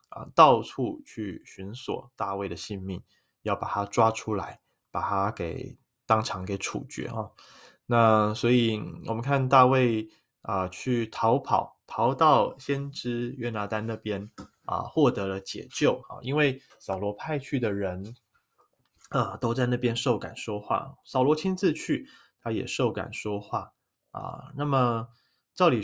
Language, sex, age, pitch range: Chinese, male, 20-39, 100-125 Hz